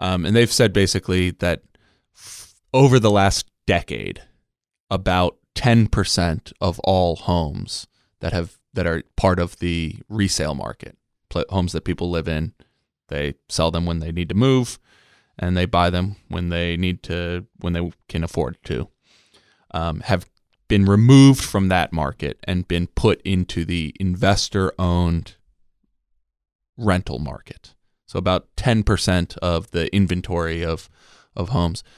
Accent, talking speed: American, 145 wpm